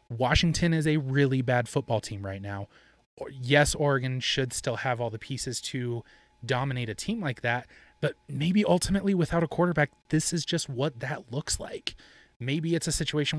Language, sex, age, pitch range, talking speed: English, male, 20-39, 110-140 Hz, 180 wpm